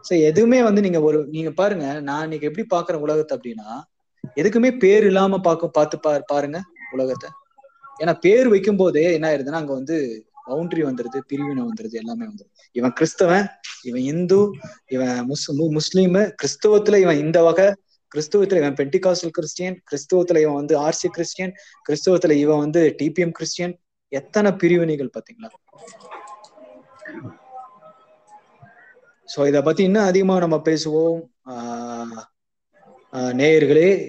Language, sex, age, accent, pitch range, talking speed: Tamil, male, 20-39, native, 140-190 Hz, 110 wpm